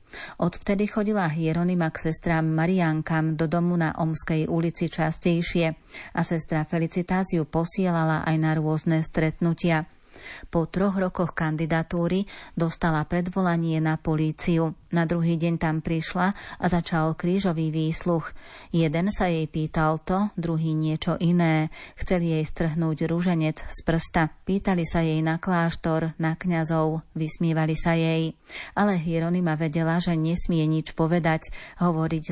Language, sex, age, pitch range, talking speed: Slovak, female, 30-49, 160-175 Hz, 130 wpm